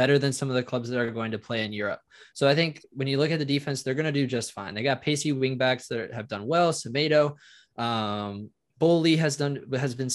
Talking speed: 250 wpm